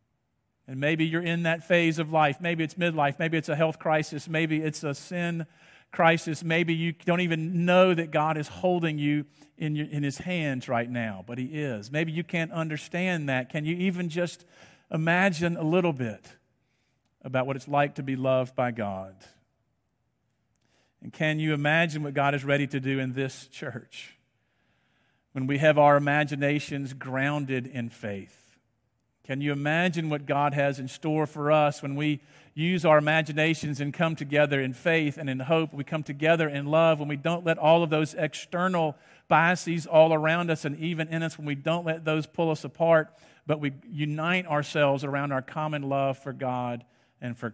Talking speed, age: 185 wpm, 50-69